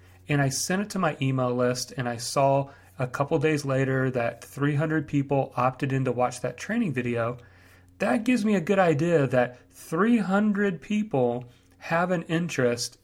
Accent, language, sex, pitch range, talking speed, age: American, English, male, 120-160 Hz, 170 wpm, 40-59